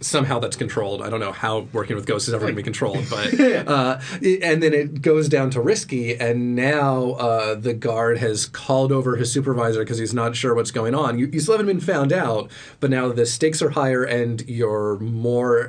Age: 30-49